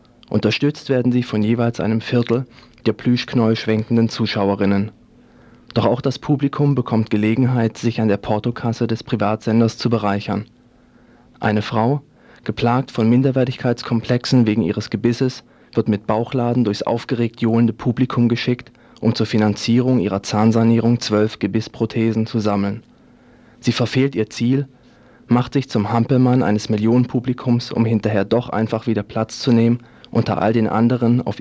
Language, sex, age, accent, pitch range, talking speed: German, male, 40-59, German, 110-125 Hz, 140 wpm